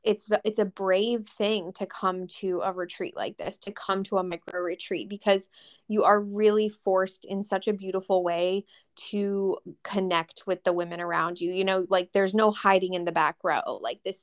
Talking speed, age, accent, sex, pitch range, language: 200 wpm, 20-39, American, female, 180-200 Hz, English